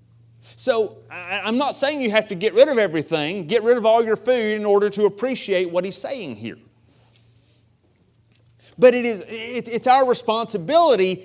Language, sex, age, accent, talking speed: English, male, 30-49, American, 165 wpm